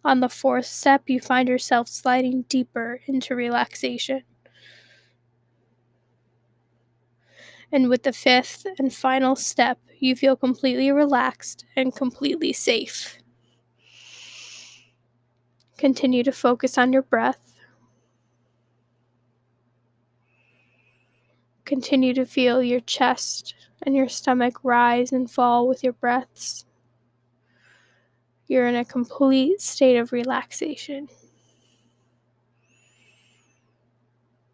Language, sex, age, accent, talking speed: English, female, 10-29, American, 90 wpm